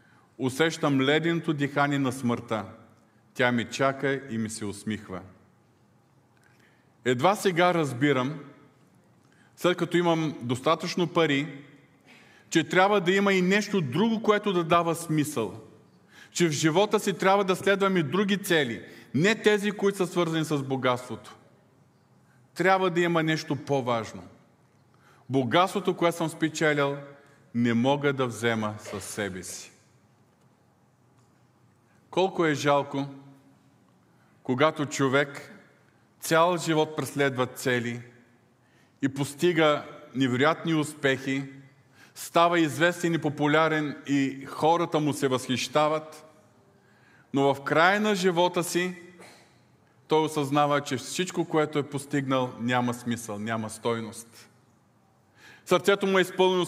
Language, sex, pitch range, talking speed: Bulgarian, male, 125-170 Hz, 115 wpm